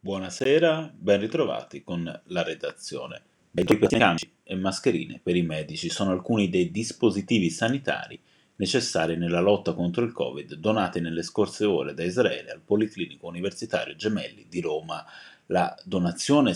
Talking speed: 140 wpm